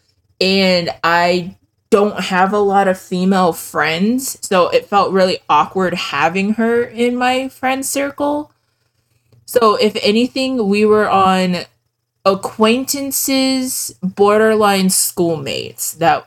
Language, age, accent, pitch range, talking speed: English, 20-39, American, 120-200 Hz, 110 wpm